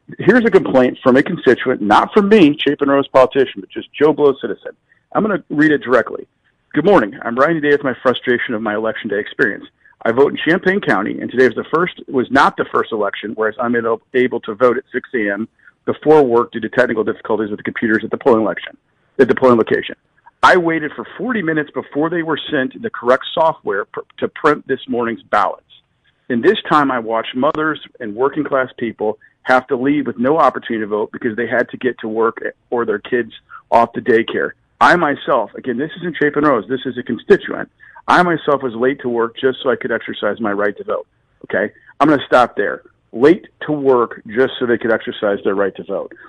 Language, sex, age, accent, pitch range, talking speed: English, male, 50-69, American, 120-155 Hz, 220 wpm